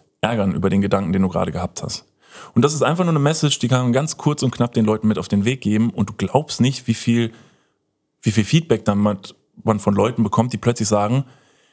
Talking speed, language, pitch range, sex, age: 235 wpm, German, 105-125 Hz, male, 30-49